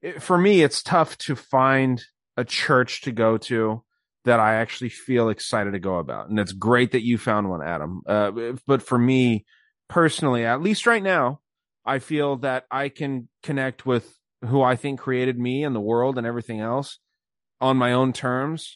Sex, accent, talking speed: male, American, 185 wpm